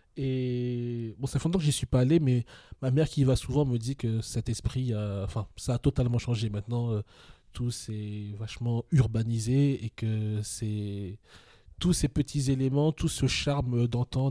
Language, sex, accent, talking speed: French, male, French, 185 wpm